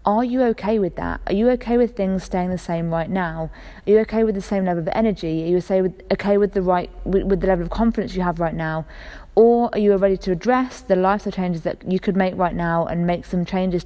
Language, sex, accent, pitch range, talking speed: English, female, British, 170-200 Hz, 250 wpm